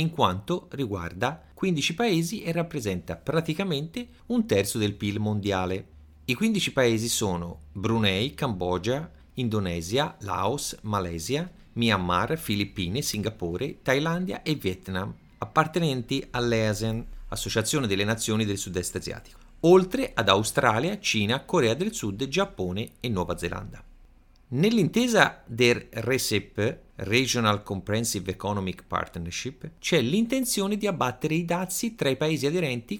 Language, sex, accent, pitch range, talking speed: Italian, male, native, 100-155 Hz, 115 wpm